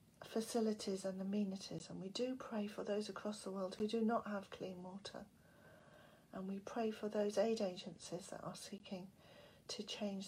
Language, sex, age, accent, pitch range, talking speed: English, female, 40-59, British, 180-210 Hz, 175 wpm